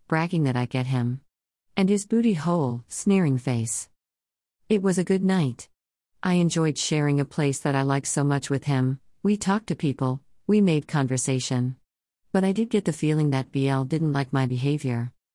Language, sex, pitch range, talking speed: English, female, 130-170 Hz, 185 wpm